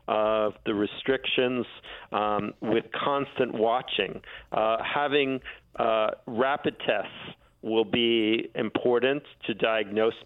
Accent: American